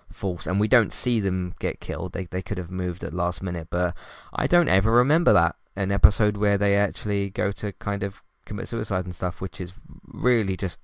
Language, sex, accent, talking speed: English, male, British, 215 wpm